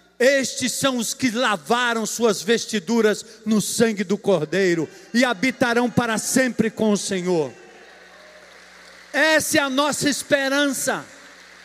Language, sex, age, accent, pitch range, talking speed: Portuguese, male, 50-69, Brazilian, 215-275 Hz, 120 wpm